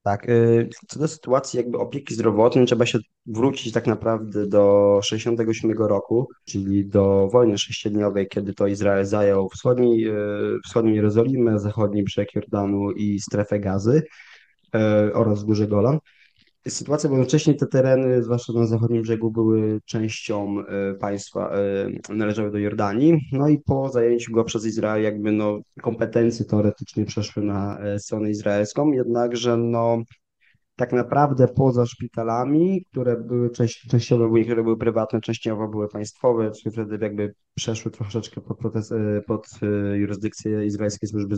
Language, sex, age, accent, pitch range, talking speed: Polish, male, 20-39, native, 105-120 Hz, 130 wpm